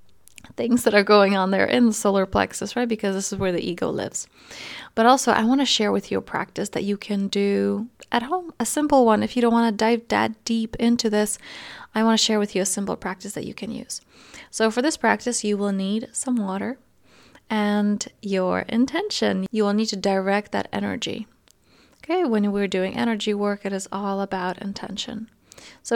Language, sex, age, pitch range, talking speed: English, female, 20-39, 200-235 Hz, 210 wpm